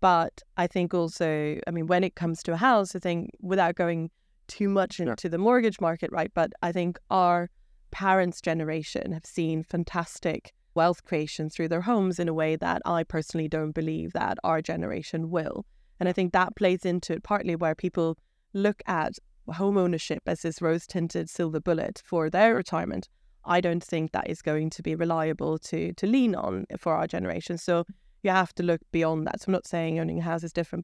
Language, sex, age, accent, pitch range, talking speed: English, female, 20-39, British, 160-180 Hz, 200 wpm